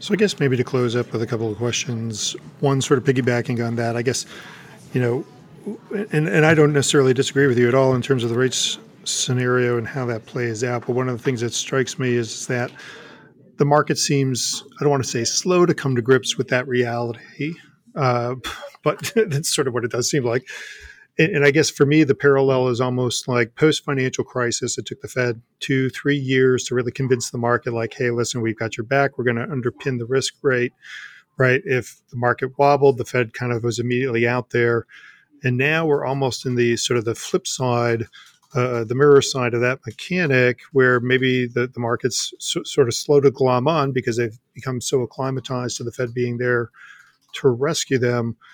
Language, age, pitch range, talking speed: English, 40-59, 120-140 Hz, 215 wpm